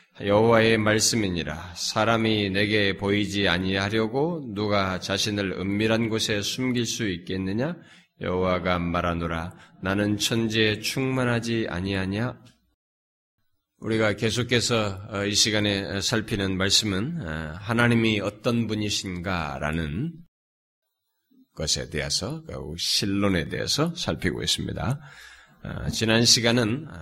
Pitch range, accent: 95-130 Hz, native